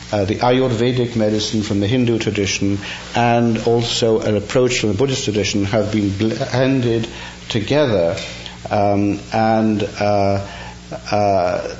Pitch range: 100-115 Hz